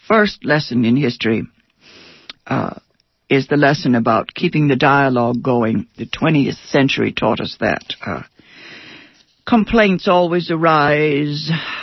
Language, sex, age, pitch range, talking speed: English, female, 60-79, 130-200 Hz, 115 wpm